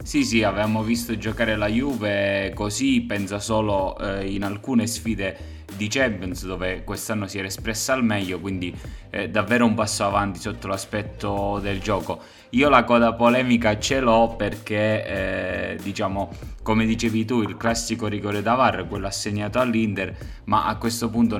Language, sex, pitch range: Italian, male, 100-110 Hz